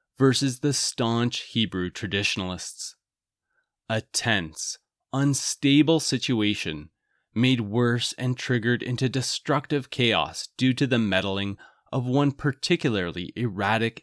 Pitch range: 105-140 Hz